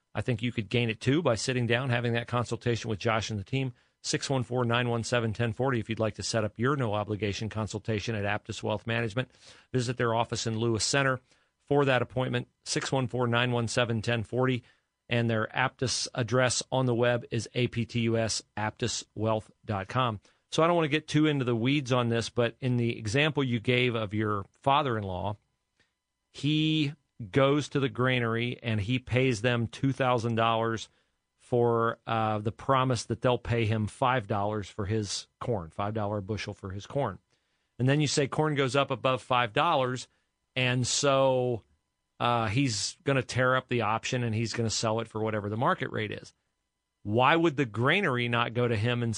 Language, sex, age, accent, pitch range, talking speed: English, male, 40-59, American, 110-130 Hz, 175 wpm